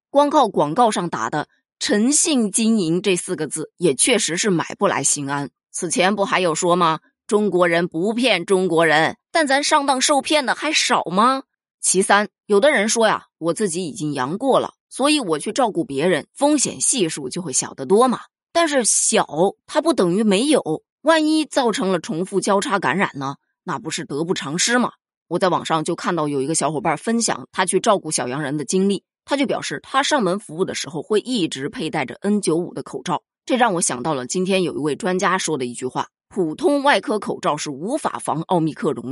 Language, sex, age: Chinese, female, 20-39